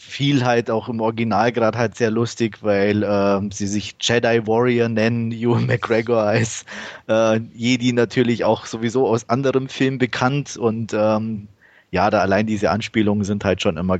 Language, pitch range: German, 100-120 Hz